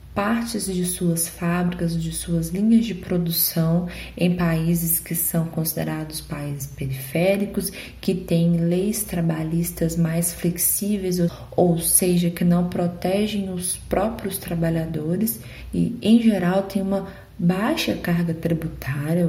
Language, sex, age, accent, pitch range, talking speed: Portuguese, female, 20-39, Brazilian, 165-200 Hz, 120 wpm